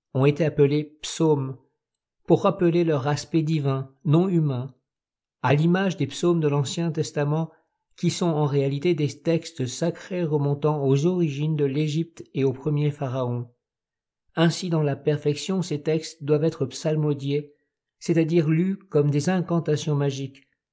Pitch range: 145-175 Hz